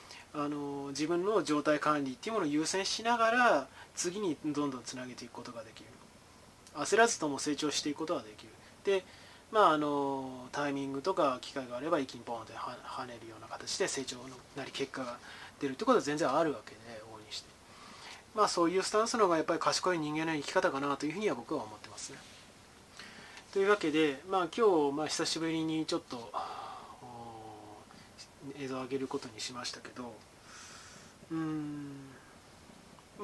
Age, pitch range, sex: 20-39, 125-165 Hz, male